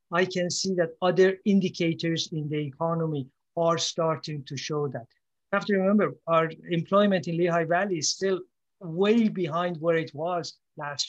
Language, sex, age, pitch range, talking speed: English, male, 50-69, 155-185 Hz, 170 wpm